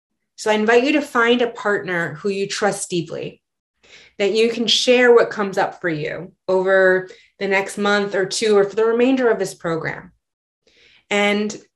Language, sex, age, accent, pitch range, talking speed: English, female, 20-39, American, 185-230 Hz, 180 wpm